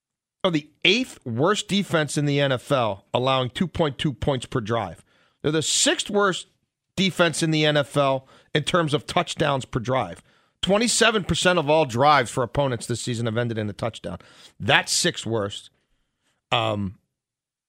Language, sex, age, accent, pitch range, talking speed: English, male, 40-59, American, 130-175 Hz, 145 wpm